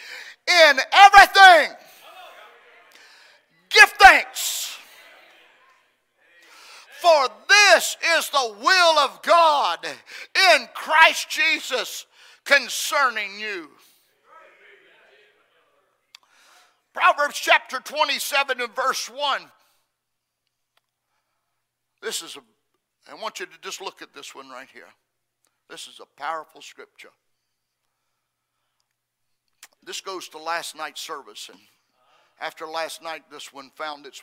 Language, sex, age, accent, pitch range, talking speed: English, male, 50-69, American, 230-345 Hz, 95 wpm